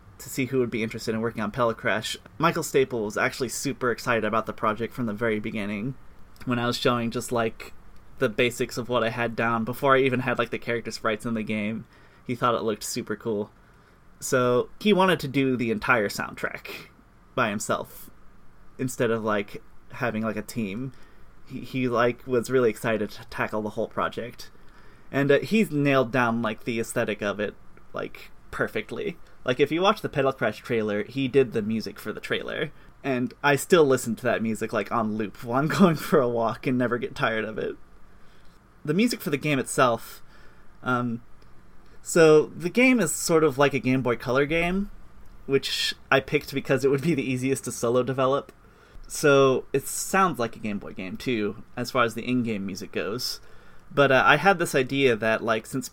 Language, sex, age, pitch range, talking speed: English, male, 20-39, 115-140 Hz, 200 wpm